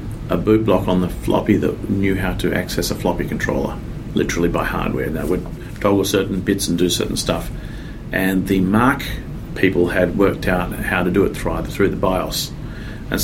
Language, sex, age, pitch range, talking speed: English, male, 40-59, 90-105 Hz, 195 wpm